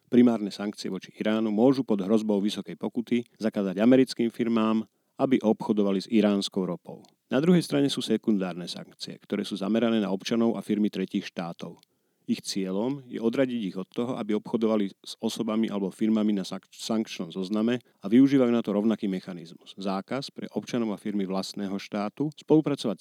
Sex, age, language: male, 40-59, Slovak